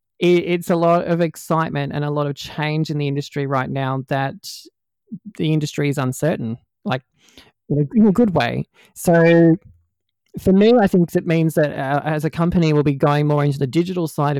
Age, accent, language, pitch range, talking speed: 20-39, Australian, English, 140-160 Hz, 190 wpm